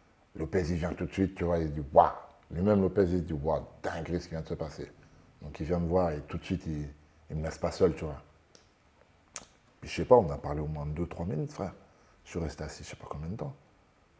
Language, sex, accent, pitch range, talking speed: French, male, French, 80-95 Hz, 290 wpm